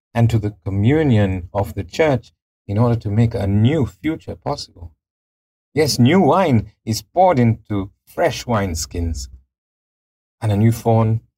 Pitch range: 85-110 Hz